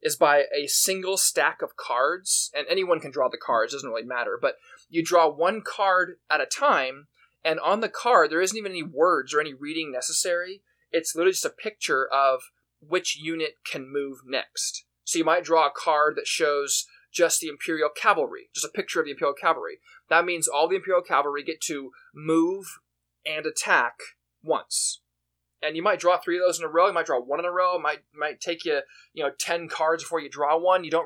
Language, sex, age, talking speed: English, male, 20-39, 215 wpm